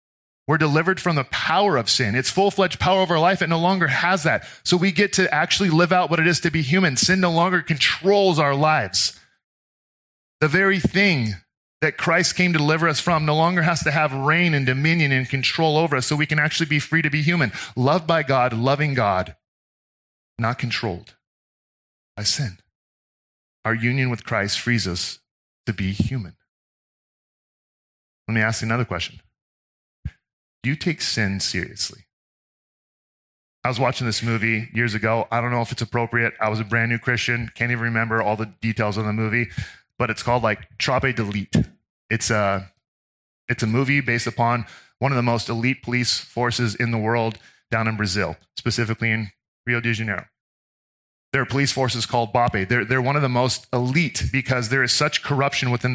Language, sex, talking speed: English, male, 190 wpm